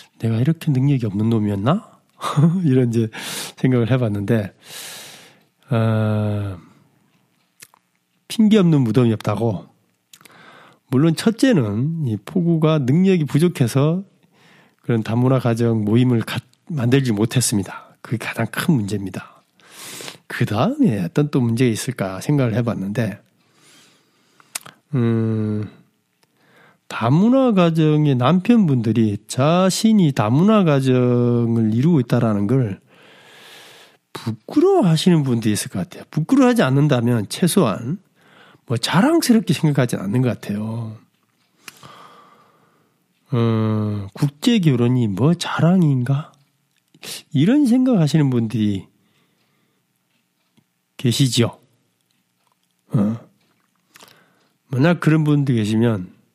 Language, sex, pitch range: Korean, male, 110-165 Hz